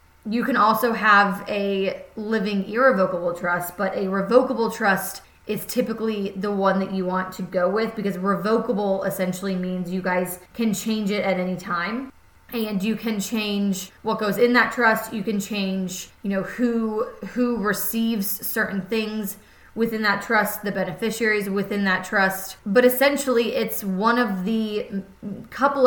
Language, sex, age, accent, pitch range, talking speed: English, female, 20-39, American, 195-225 Hz, 160 wpm